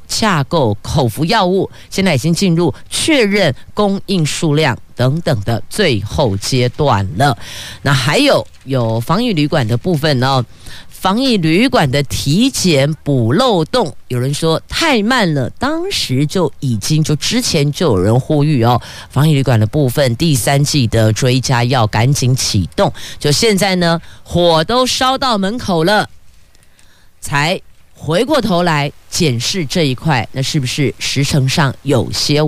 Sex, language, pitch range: female, Chinese, 125-175 Hz